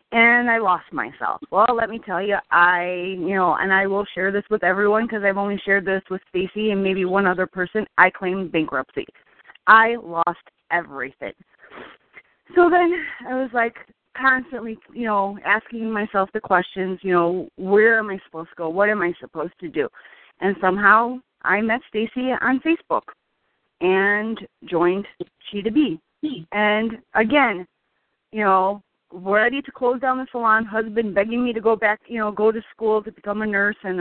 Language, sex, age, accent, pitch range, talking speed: English, female, 30-49, American, 185-230 Hz, 175 wpm